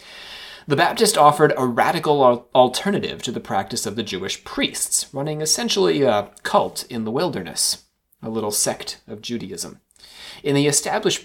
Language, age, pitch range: English, 30-49, 115-155 Hz